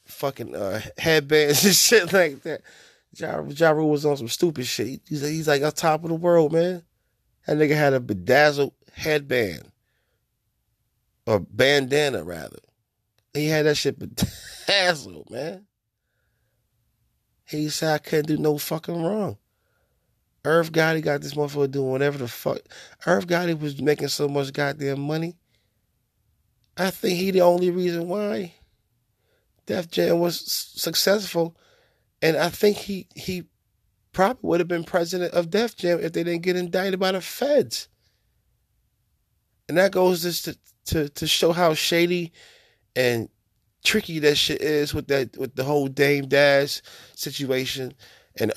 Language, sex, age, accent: English, male, 30-49, American